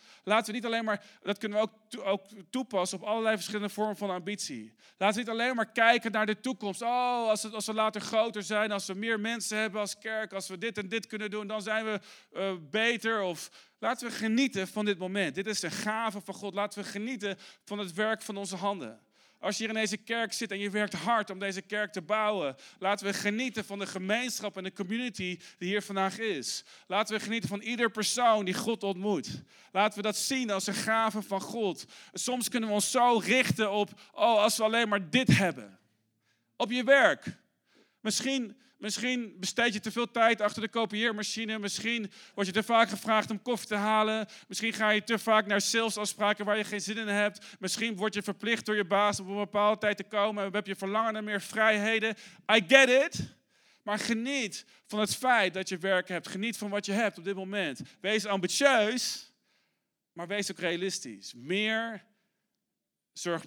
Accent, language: Dutch, Dutch